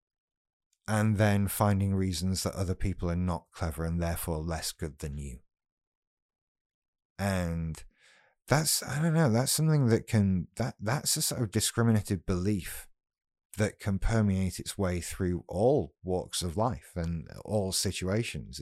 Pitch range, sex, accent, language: 85-105 Hz, male, British, English